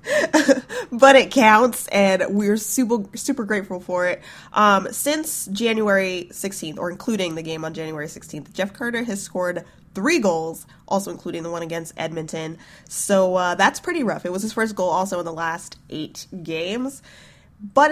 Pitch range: 170-225 Hz